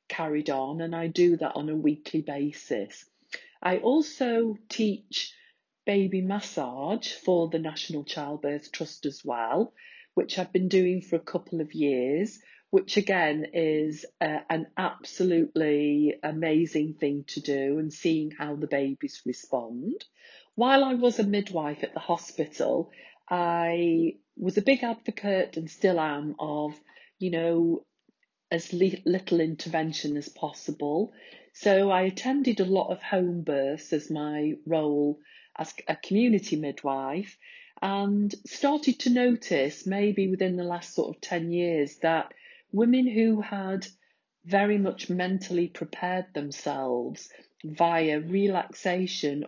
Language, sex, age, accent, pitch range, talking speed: English, female, 40-59, British, 155-205 Hz, 130 wpm